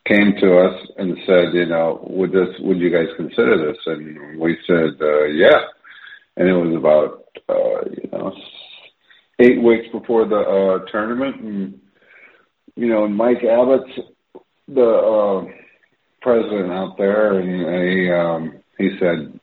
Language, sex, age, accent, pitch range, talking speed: English, male, 50-69, American, 95-120 Hz, 150 wpm